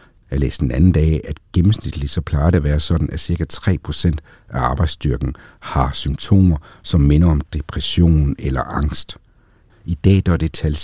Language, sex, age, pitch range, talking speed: Danish, male, 60-79, 75-95 Hz, 175 wpm